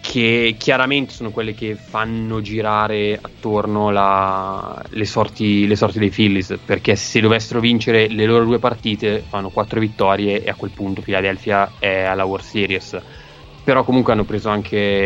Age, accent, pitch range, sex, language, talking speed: 20-39, native, 105-115 Hz, male, Italian, 160 wpm